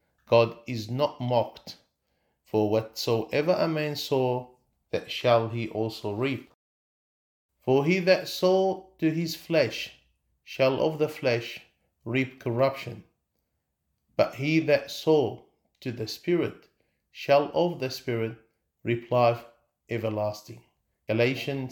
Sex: male